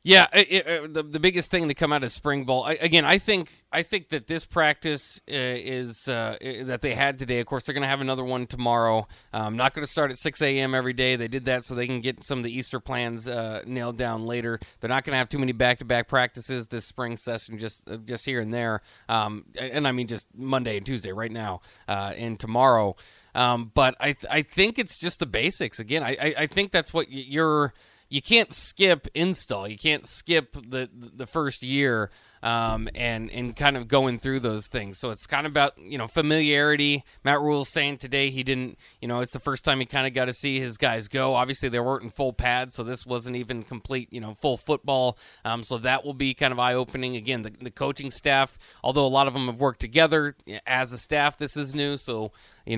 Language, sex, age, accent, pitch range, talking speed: English, male, 30-49, American, 120-145 Hz, 235 wpm